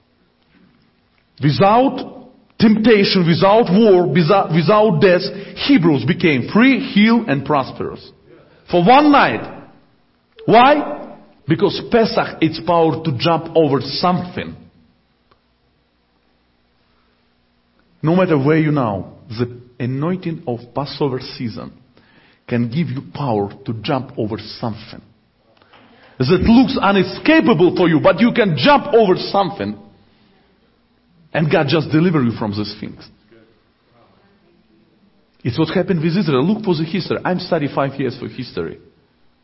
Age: 50-69